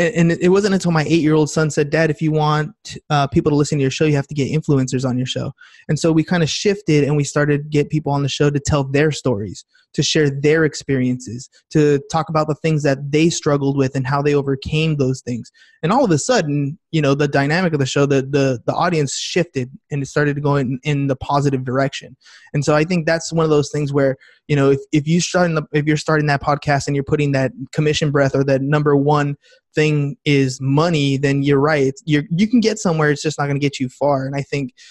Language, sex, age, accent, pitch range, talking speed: English, male, 20-39, American, 140-155 Hz, 255 wpm